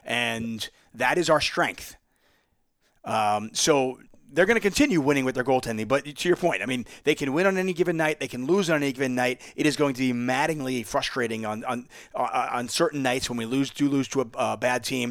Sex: male